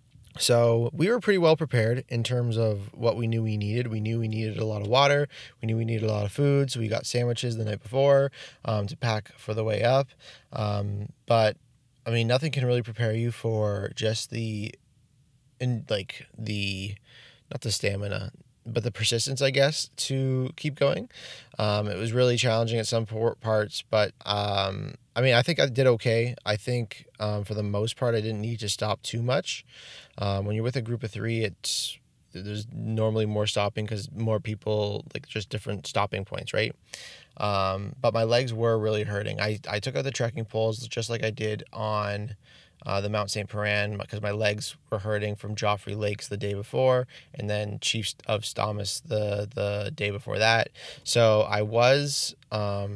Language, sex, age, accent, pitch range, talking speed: English, male, 20-39, American, 105-125 Hz, 195 wpm